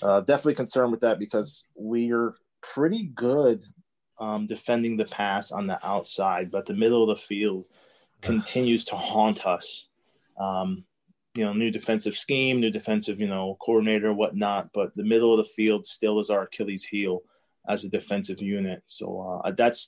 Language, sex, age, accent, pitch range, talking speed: English, male, 20-39, American, 100-115 Hz, 170 wpm